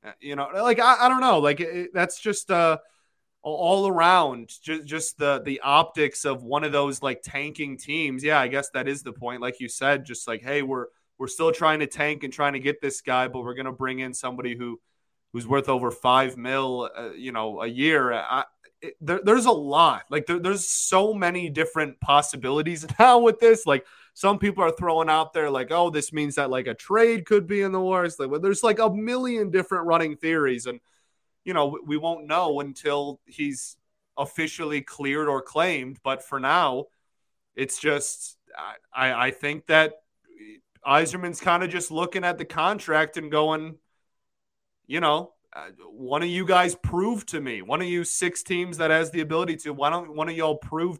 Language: English